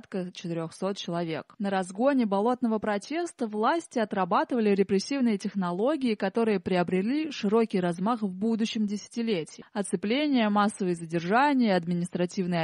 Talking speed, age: 100 wpm, 20-39